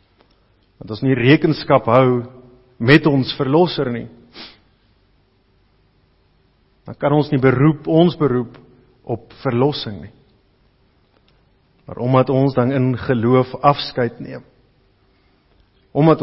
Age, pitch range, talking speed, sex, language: 50-69, 115-145 Hz, 105 wpm, male, English